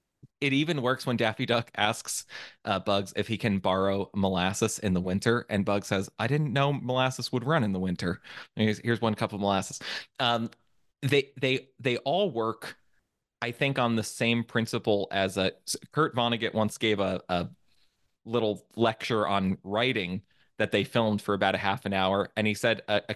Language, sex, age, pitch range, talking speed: English, male, 20-39, 100-130 Hz, 185 wpm